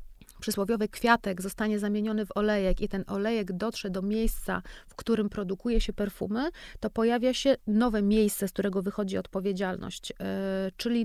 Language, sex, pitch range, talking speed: Polish, female, 195-225 Hz, 145 wpm